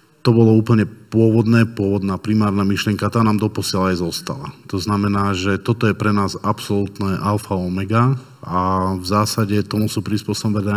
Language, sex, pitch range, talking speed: Slovak, male, 95-105 Hz, 160 wpm